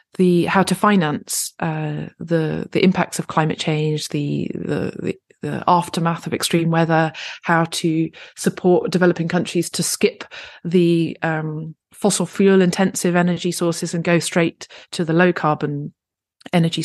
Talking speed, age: 140 wpm, 30-49